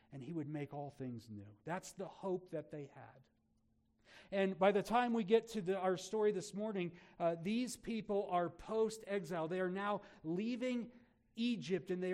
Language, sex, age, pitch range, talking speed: English, male, 40-59, 125-200 Hz, 185 wpm